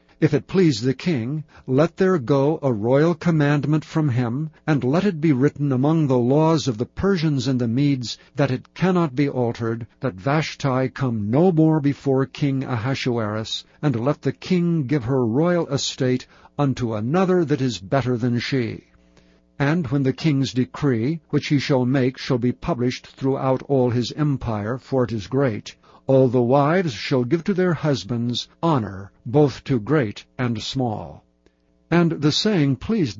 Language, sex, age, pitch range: English, male, 60-79, 125-155 Hz